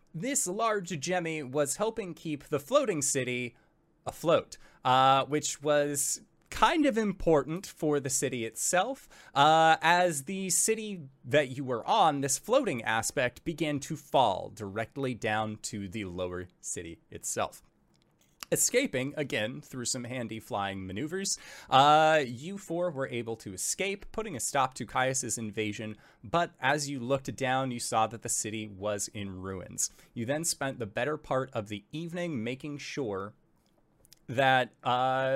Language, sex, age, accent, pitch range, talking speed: English, male, 20-39, American, 115-160 Hz, 145 wpm